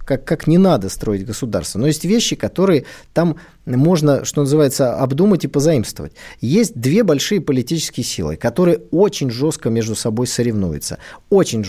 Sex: male